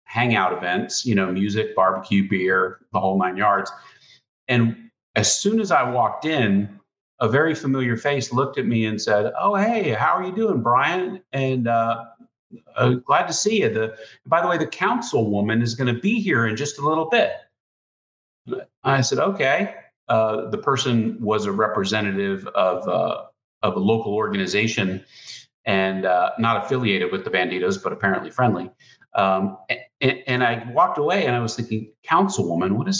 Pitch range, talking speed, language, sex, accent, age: 105-140 Hz, 175 wpm, English, male, American, 40-59